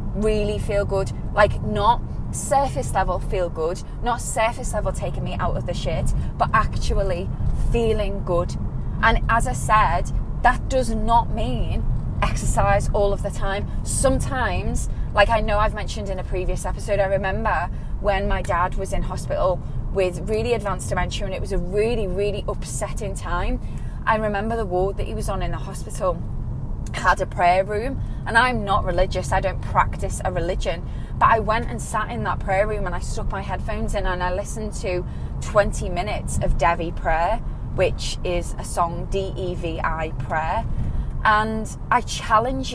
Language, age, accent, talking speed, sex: English, 20-39, British, 170 wpm, female